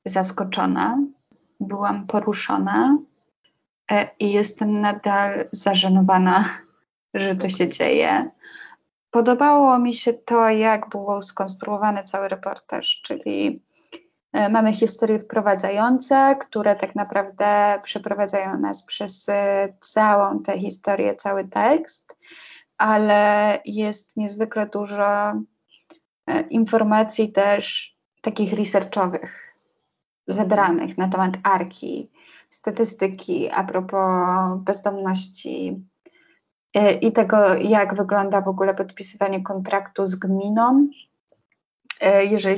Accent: native